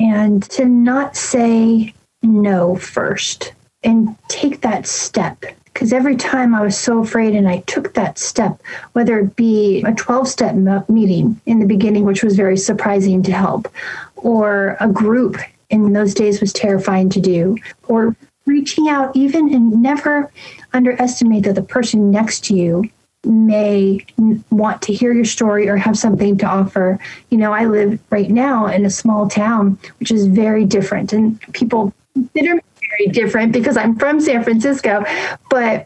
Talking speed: 165 wpm